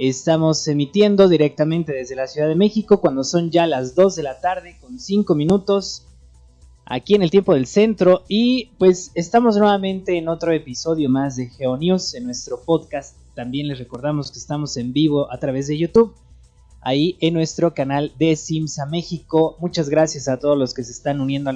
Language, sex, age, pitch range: Spanish, male, 20-39, 130-175 Hz